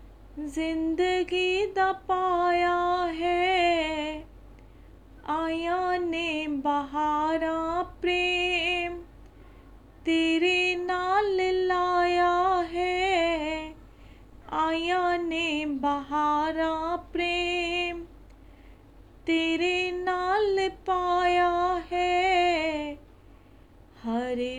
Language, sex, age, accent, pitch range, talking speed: Hindi, female, 30-49, native, 285-350 Hz, 50 wpm